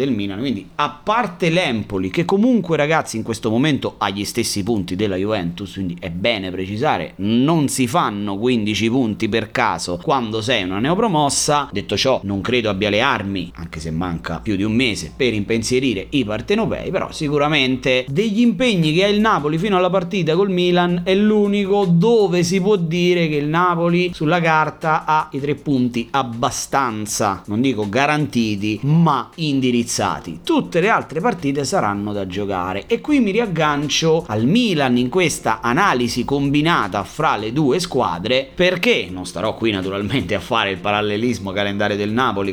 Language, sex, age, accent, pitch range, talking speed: Italian, male, 30-49, native, 105-160 Hz, 165 wpm